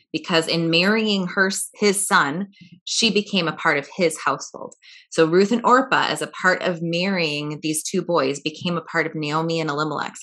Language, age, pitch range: English, 20-39, 160-220 Hz